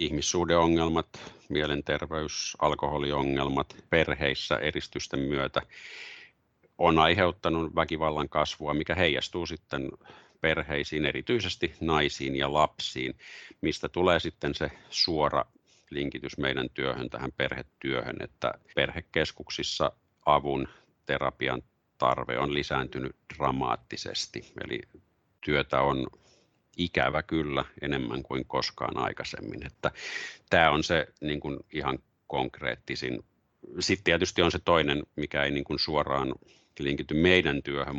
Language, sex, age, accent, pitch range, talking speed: Finnish, male, 50-69, native, 70-85 Hz, 100 wpm